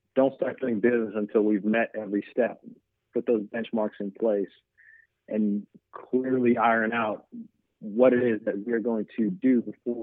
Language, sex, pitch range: English, male, 105-115 Hz